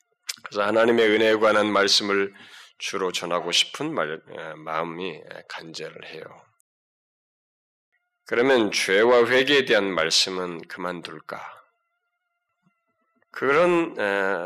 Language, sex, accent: Korean, male, native